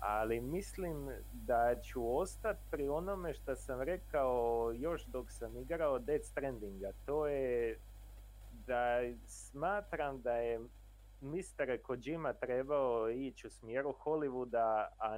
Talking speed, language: 120 wpm, Croatian